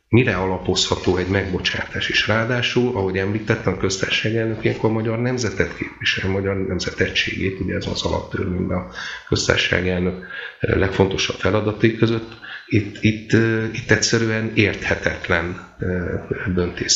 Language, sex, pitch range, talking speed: Hungarian, male, 90-110 Hz, 125 wpm